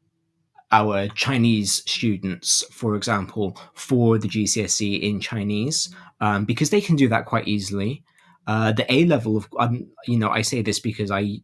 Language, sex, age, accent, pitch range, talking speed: English, male, 20-39, British, 100-120 Hz, 155 wpm